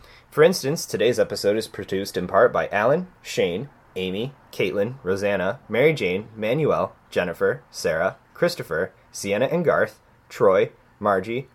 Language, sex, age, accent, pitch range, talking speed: English, male, 20-39, American, 120-160 Hz, 130 wpm